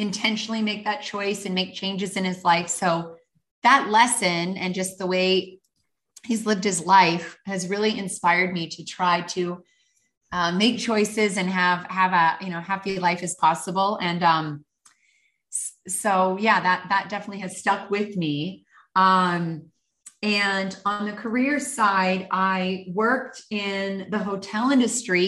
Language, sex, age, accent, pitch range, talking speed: English, female, 30-49, American, 180-215 Hz, 150 wpm